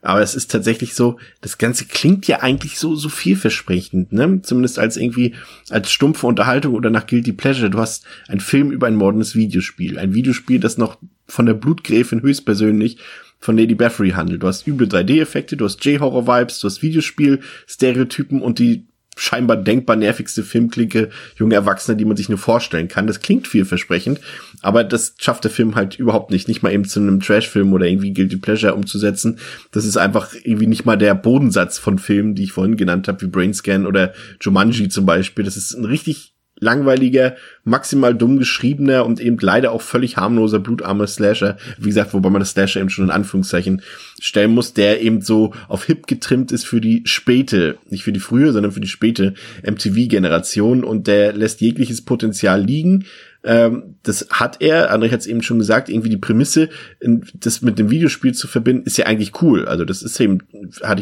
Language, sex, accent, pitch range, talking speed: German, male, German, 100-125 Hz, 190 wpm